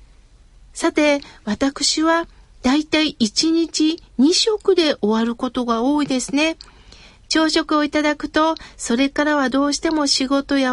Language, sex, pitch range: Japanese, female, 250-320 Hz